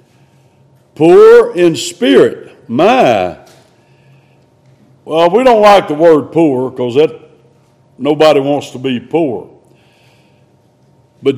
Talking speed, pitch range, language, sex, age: 100 wpm, 150-240 Hz, English, male, 60-79